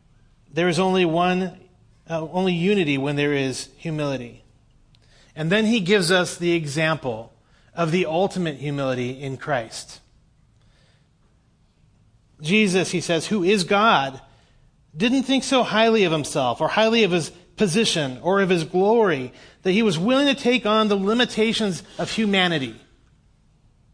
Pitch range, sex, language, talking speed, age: 130-180 Hz, male, English, 140 wpm, 30-49